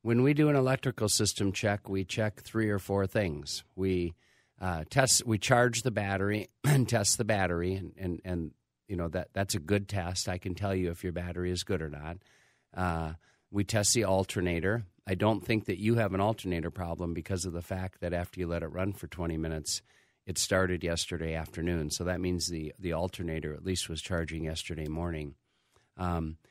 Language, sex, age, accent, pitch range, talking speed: English, male, 50-69, American, 85-105 Hz, 205 wpm